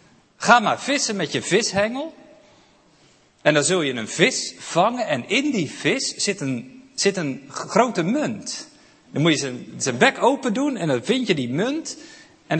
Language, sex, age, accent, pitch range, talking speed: Dutch, male, 40-59, Dutch, 135-215 Hz, 175 wpm